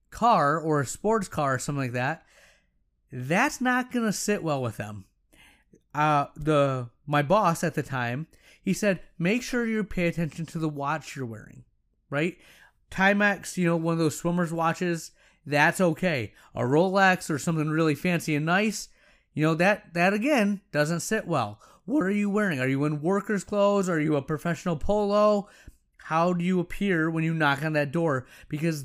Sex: male